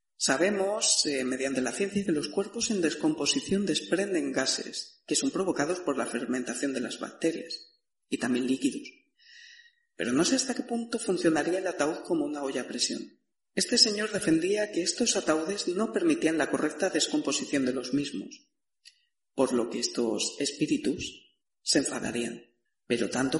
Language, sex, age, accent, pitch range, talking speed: Spanish, female, 40-59, Spanish, 140-215 Hz, 155 wpm